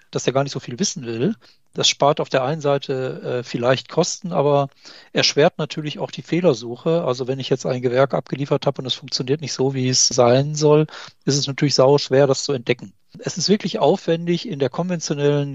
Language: German